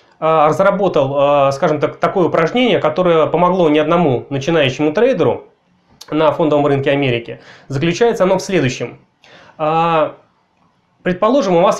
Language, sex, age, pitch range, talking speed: Russian, male, 20-39, 155-195 Hz, 110 wpm